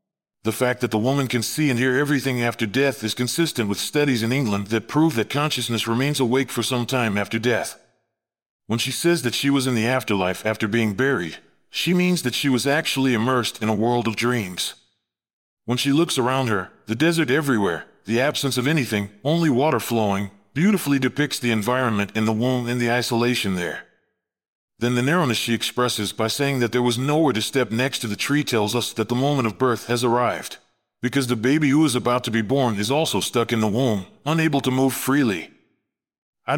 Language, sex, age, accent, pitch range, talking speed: English, male, 40-59, American, 115-140 Hz, 205 wpm